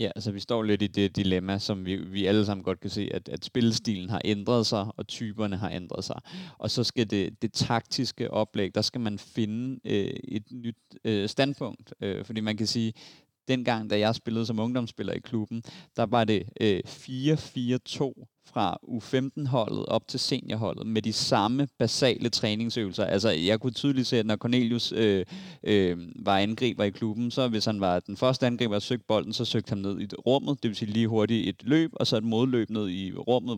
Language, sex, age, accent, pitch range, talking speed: Danish, male, 30-49, native, 105-125 Hz, 200 wpm